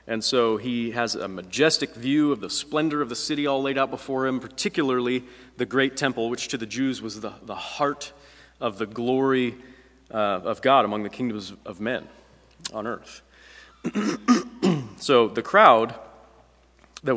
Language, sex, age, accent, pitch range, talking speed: English, male, 30-49, American, 110-135 Hz, 165 wpm